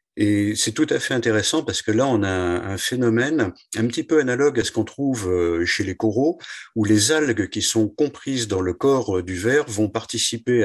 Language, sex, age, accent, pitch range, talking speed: French, male, 50-69, French, 95-125 Hz, 210 wpm